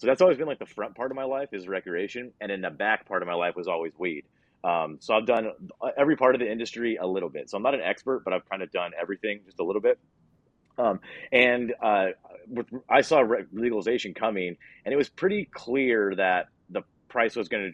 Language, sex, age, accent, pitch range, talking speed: English, male, 30-49, American, 100-135 Hz, 230 wpm